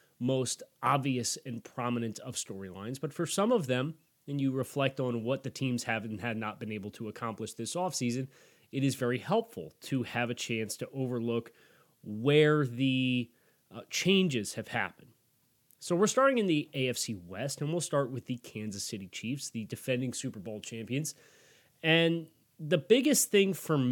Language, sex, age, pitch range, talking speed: English, male, 30-49, 115-145 Hz, 175 wpm